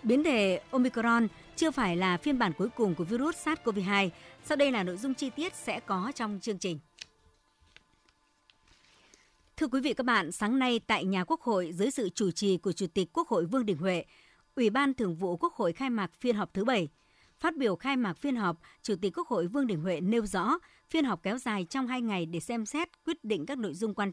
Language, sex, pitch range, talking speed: Vietnamese, male, 185-260 Hz, 225 wpm